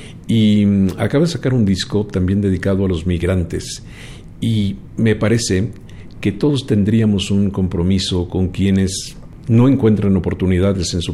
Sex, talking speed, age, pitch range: male, 140 wpm, 50-69, 90-105 Hz